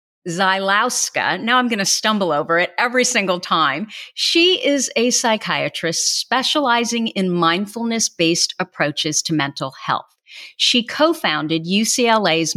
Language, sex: English, female